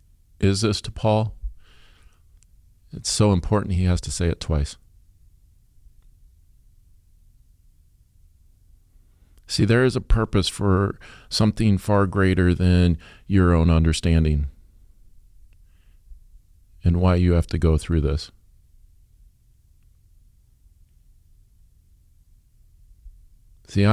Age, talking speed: 50-69, 90 wpm